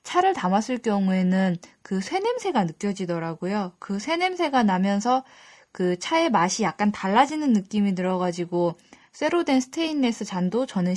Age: 10-29